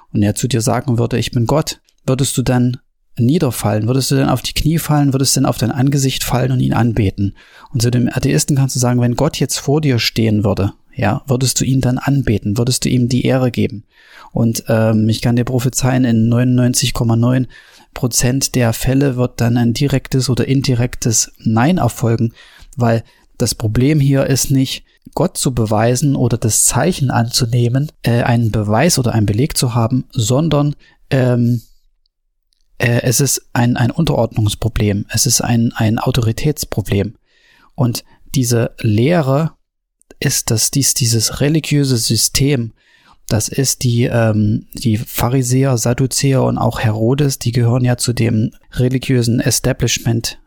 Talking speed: 160 wpm